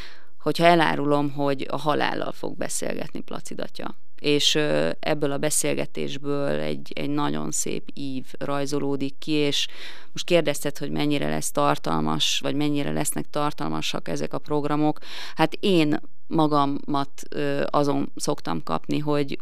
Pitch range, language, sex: 135-150 Hz, Hungarian, female